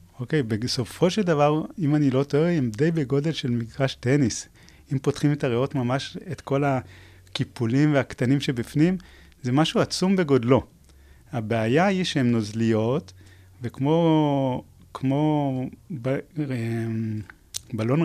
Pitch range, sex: 115-155 Hz, male